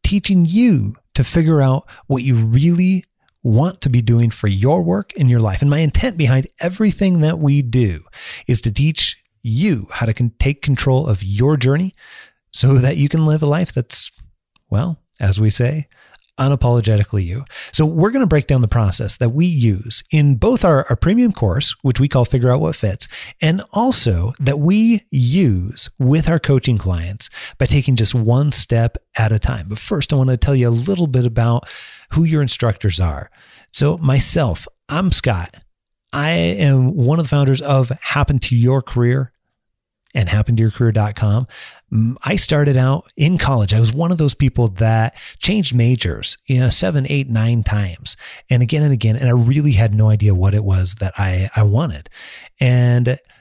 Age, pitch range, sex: 30-49, 110-145 Hz, male